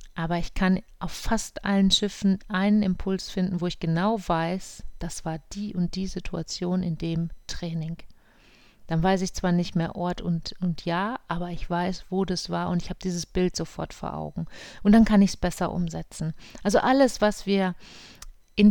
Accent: German